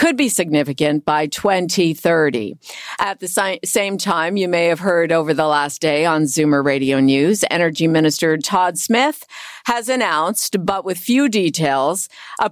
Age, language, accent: 50-69, English, American